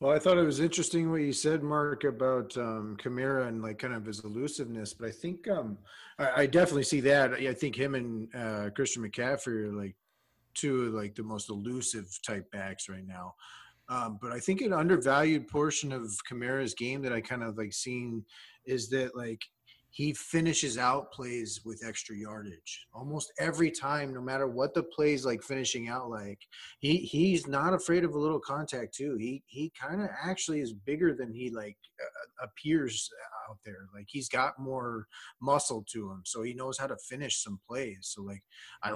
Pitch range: 110-140 Hz